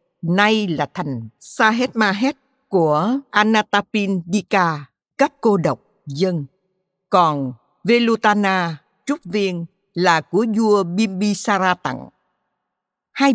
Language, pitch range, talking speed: Vietnamese, 160-210 Hz, 90 wpm